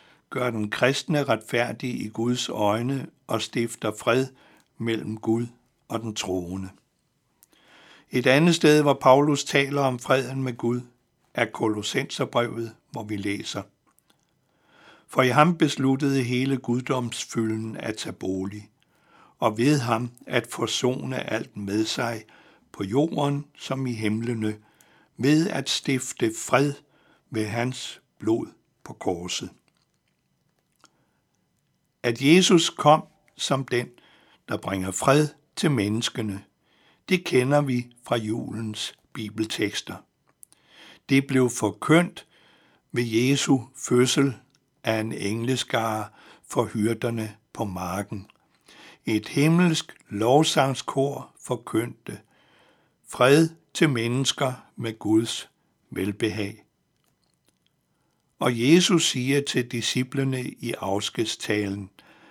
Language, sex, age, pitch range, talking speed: Danish, male, 60-79, 110-135 Hz, 105 wpm